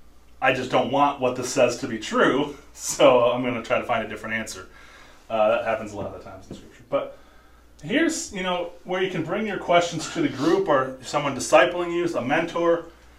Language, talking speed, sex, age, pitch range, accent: English, 225 wpm, male, 30-49, 105-155 Hz, American